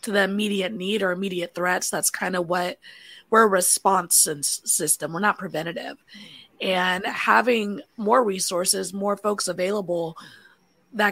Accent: American